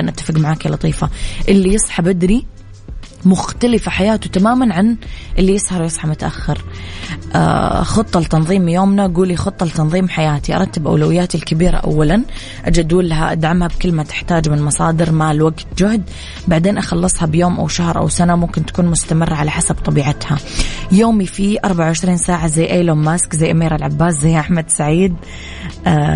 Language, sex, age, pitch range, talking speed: English, female, 20-39, 155-180 Hz, 145 wpm